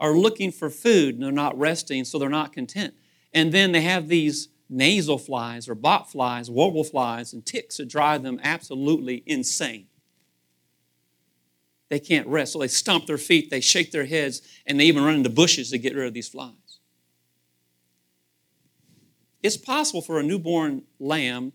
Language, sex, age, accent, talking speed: English, male, 40-59, American, 170 wpm